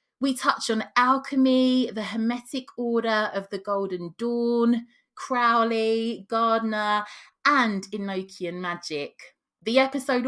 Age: 20-39